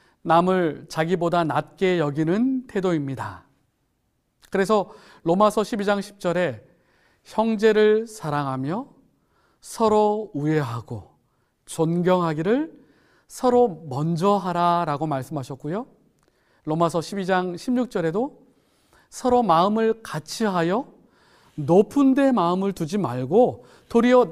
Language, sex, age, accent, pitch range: Korean, male, 40-59, native, 155-210 Hz